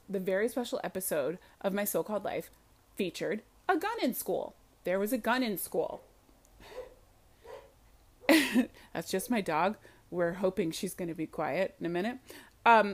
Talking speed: 160 wpm